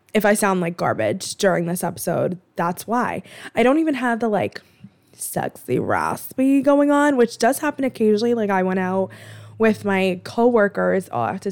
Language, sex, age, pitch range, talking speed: English, female, 20-39, 185-240 Hz, 180 wpm